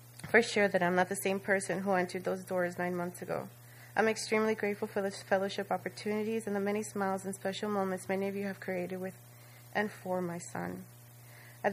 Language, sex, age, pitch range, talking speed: English, female, 30-49, 175-215 Hz, 200 wpm